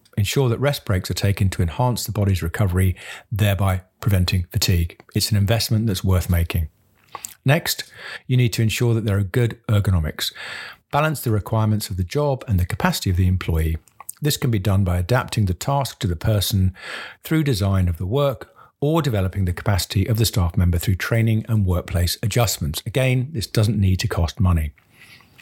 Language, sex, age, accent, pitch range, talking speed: English, male, 50-69, British, 95-120 Hz, 185 wpm